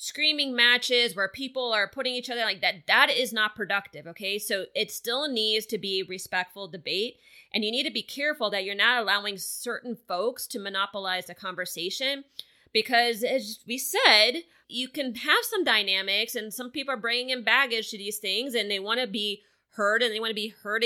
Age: 20-39